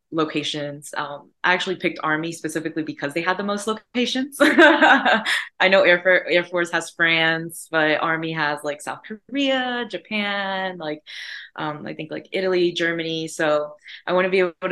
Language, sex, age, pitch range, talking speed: English, female, 20-39, 150-185 Hz, 165 wpm